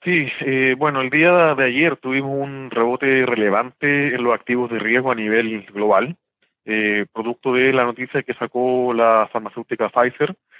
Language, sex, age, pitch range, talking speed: Spanish, male, 30-49, 115-130 Hz, 165 wpm